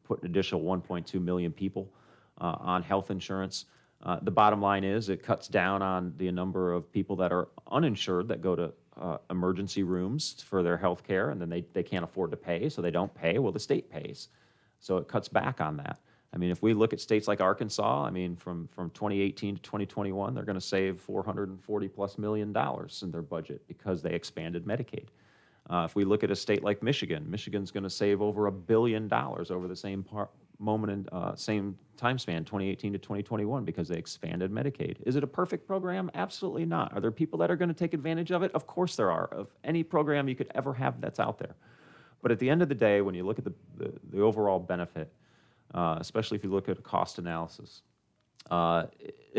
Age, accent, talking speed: 40-59, American, 220 wpm